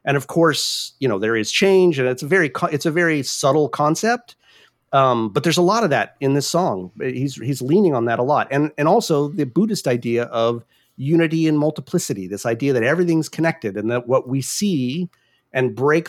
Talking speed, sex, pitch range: 210 wpm, male, 125-165 Hz